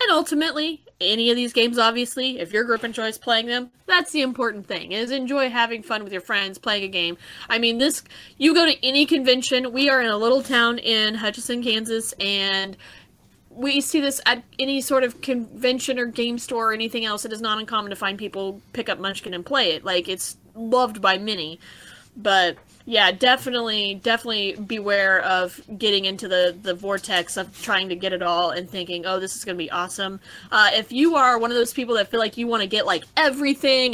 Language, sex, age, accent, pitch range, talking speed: English, female, 20-39, American, 195-250 Hz, 210 wpm